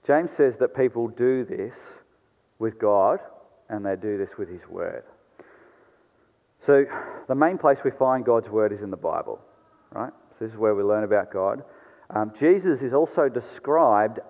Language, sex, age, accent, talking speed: English, male, 30-49, Australian, 170 wpm